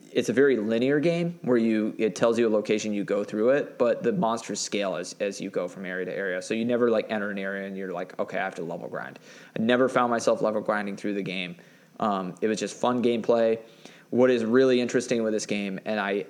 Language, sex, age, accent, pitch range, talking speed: English, male, 20-39, American, 110-125 Hz, 250 wpm